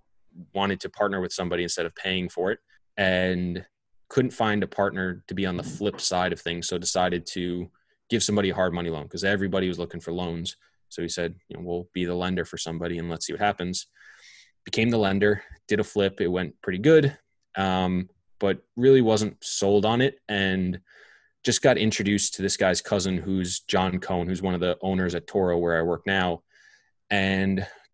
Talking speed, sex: 200 wpm, male